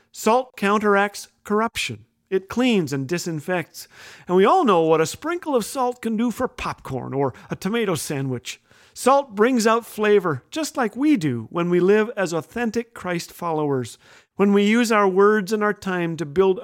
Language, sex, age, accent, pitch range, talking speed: English, male, 40-59, American, 165-215 Hz, 175 wpm